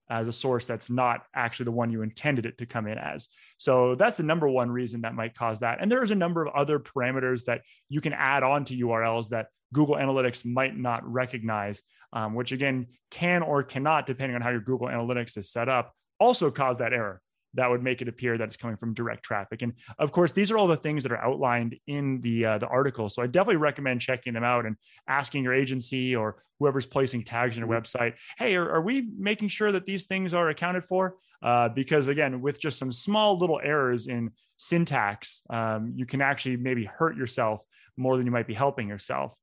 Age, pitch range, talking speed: 20-39, 115-150 Hz, 220 wpm